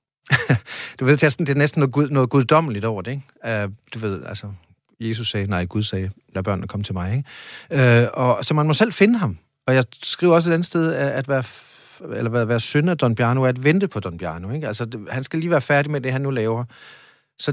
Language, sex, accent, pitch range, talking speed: Danish, male, native, 110-150 Hz, 240 wpm